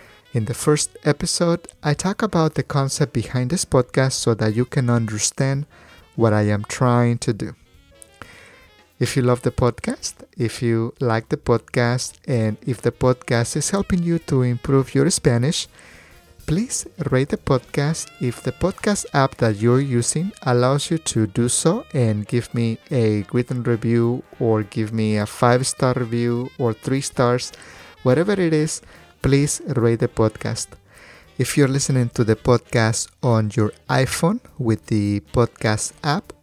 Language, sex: English, male